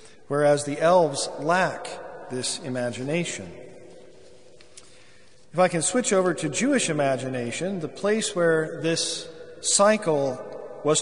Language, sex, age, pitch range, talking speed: English, male, 50-69, 140-190 Hz, 110 wpm